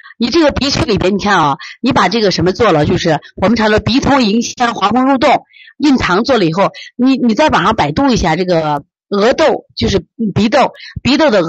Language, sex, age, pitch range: Chinese, female, 30-49, 165-230 Hz